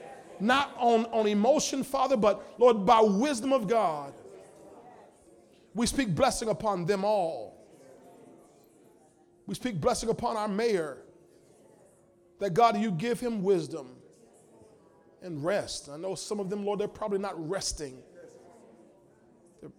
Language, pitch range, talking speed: English, 165-205 Hz, 125 wpm